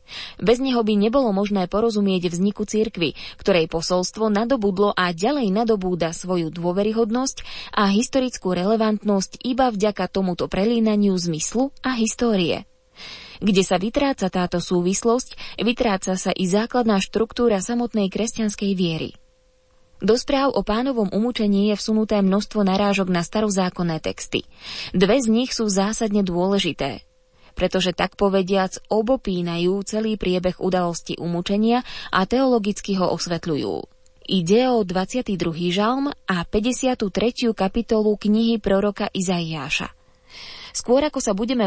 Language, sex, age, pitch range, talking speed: Slovak, female, 20-39, 185-230 Hz, 120 wpm